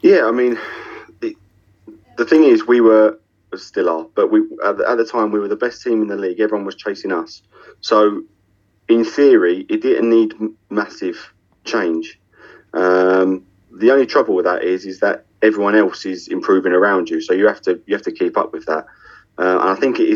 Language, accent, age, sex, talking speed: English, British, 30-49, male, 205 wpm